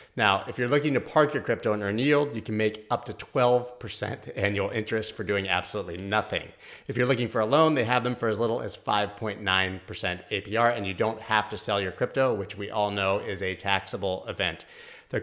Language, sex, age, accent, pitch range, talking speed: English, male, 30-49, American, 105-130 Hz, 215 wpm